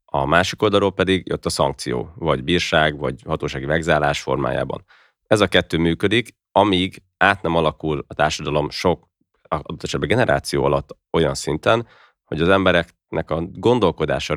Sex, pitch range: male, 75-90 Hz